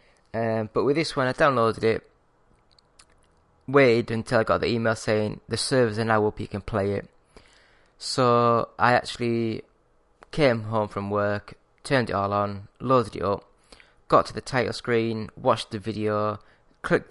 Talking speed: 165 wpm